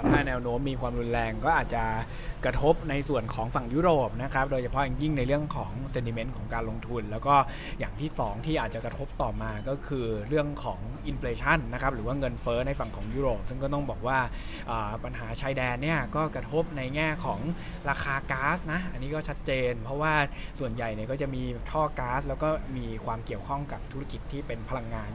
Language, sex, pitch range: Thai, male, 120-150 Hz